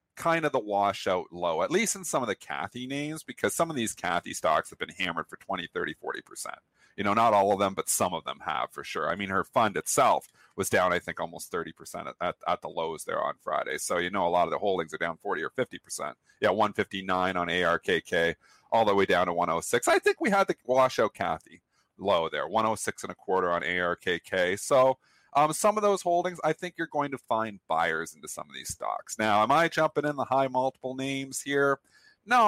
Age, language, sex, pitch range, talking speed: 40-59, English, male, 125-175 Hz, 235 wpm